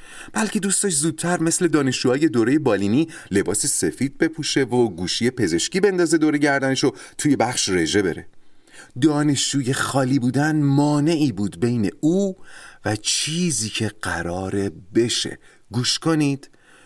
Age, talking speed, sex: 40-59, 120 wpm, male